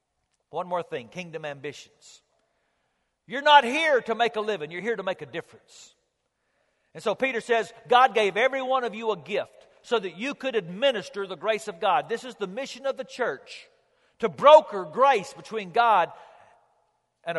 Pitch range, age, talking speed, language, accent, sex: 175-260 Hz, 50-69, 180 wpm, English, American, male